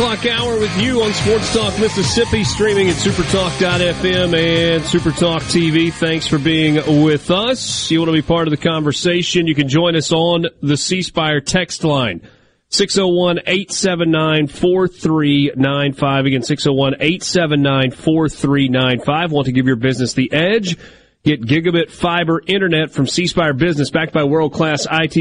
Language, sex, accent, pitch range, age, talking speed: English, male, American, 145-175 Hz, 40-59, 140 wpm